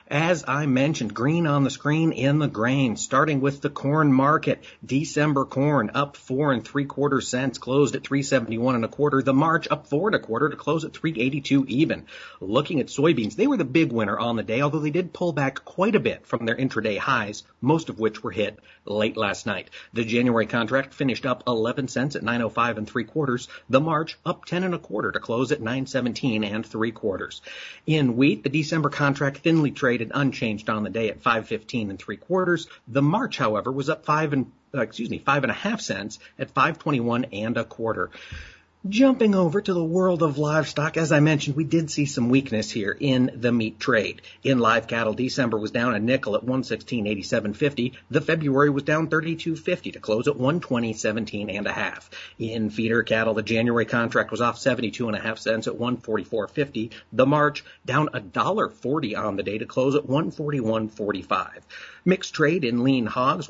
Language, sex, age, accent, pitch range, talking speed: English, male, 40-59, American, 115-150 Hz, 210 wpm